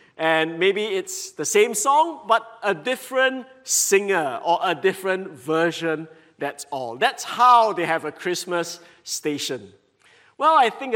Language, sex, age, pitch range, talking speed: English, male, 50-69, 170-260 Hz, 140 wpm